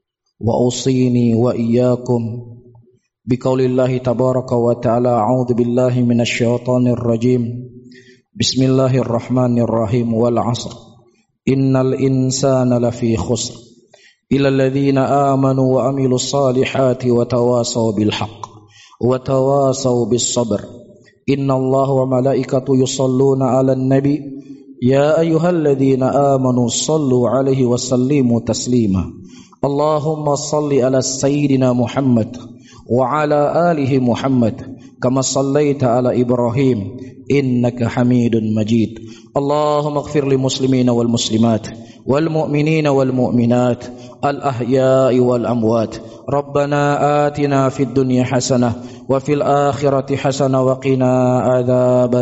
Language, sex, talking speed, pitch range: Indonesian, male, 70 wpm, 120-135 Hz